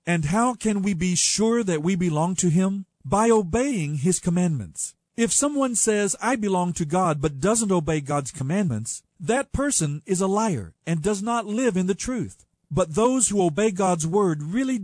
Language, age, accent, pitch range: English, 50-69, American, 160-230 Hz